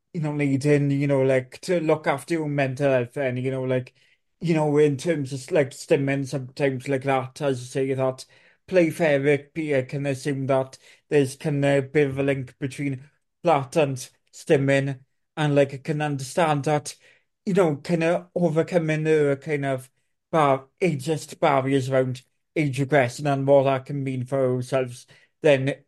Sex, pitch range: male, 130-150 Hz